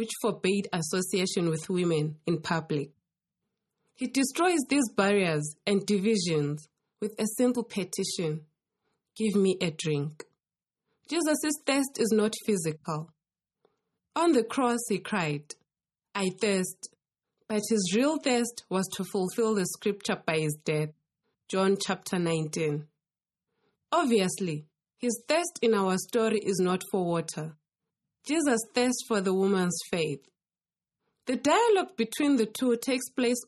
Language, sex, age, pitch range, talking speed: English, female, 20-39, 165-225 Hz, 125 wpm